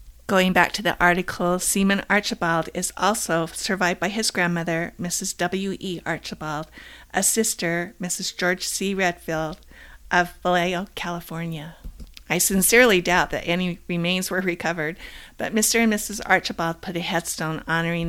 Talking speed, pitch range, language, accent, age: 140 wpm, 170-195 Hz, English, American, 50-69